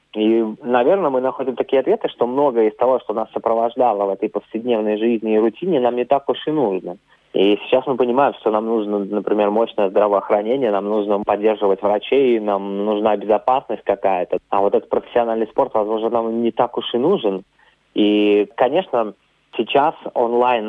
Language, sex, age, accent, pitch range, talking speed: Russian, male, 20-39, native, 105-125 Hz, 170 wpm